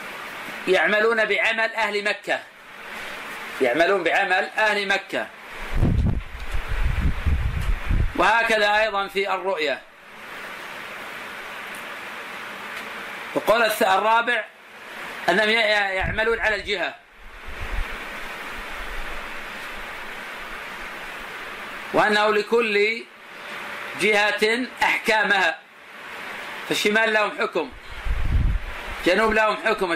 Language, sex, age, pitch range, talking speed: Arabic, male, 40-59, 195-230 Hz, 60 wpm